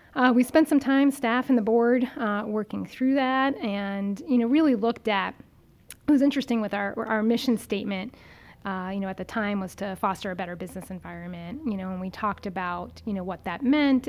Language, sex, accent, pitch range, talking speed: English, female, American, 190-230 Hz, 215 wpm